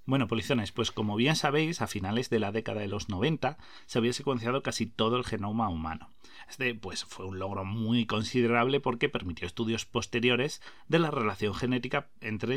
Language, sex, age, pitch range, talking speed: Spanish, male, 30-49, 110-140 Hz, 180 wpm